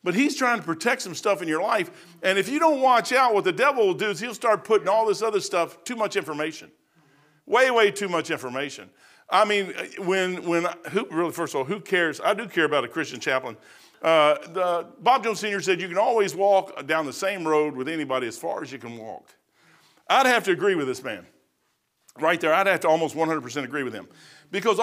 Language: English